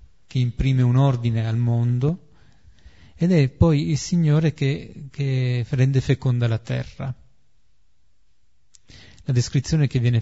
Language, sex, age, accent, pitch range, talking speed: Italian, male, 40-59, native, 115-140 Hz, 125 wpm